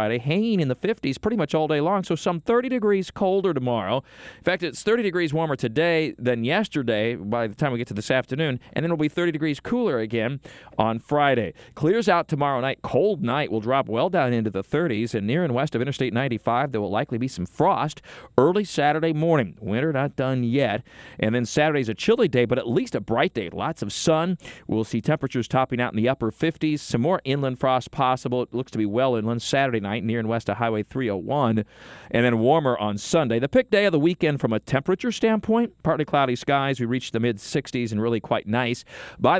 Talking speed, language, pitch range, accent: 220 wpm, English, 115-160 Hz, American